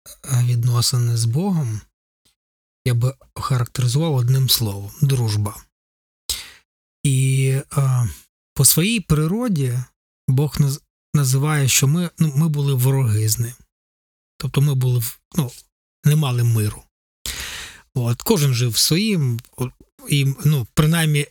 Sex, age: male, 20-39